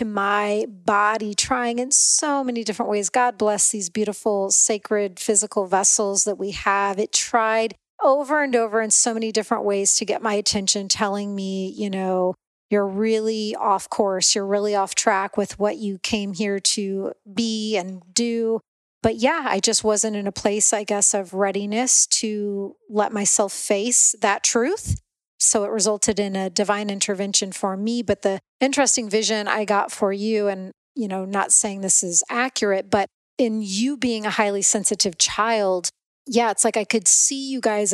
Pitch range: 200-230 Hz